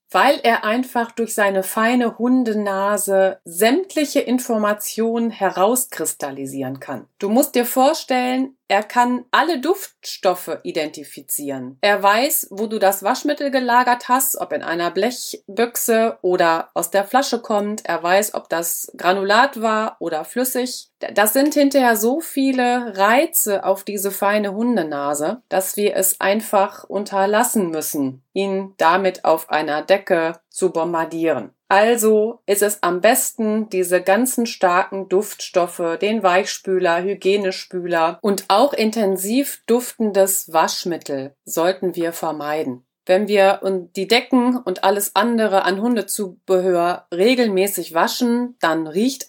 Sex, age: female, 30-49